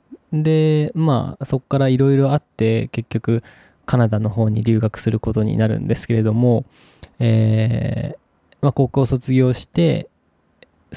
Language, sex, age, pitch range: Japanese, male, 20-39, 110-140 Hz